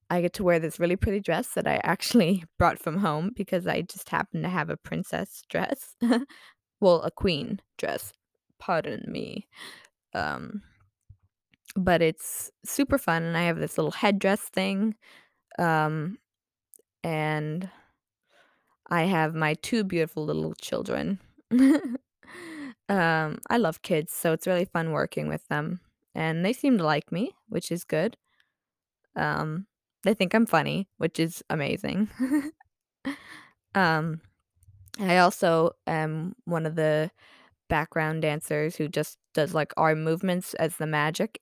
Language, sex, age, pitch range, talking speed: English, female, 20-39, 160-210 Hz, 140 wpm